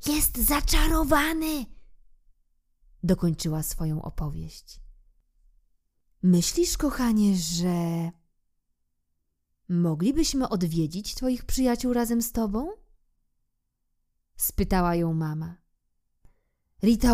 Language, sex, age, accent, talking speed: Polish, female, 20-39, native, 65 wpm